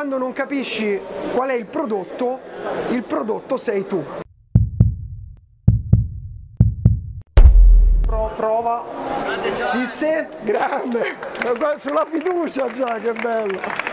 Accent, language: native, Italian